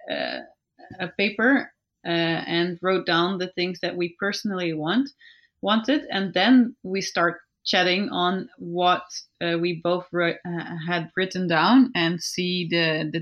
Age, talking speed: 20-39, 145 wpm